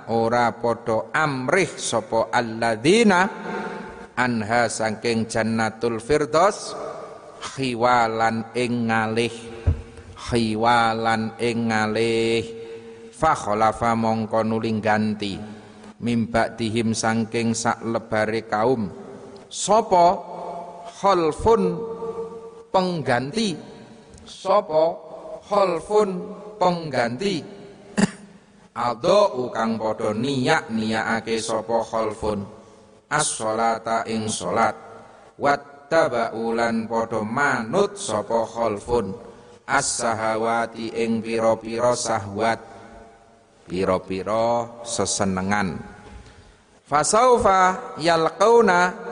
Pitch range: 110-160 Hz